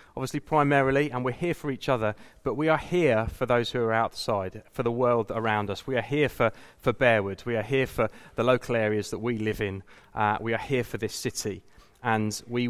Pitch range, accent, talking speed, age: 110-140 Hz, British, 225 wpm, 30-49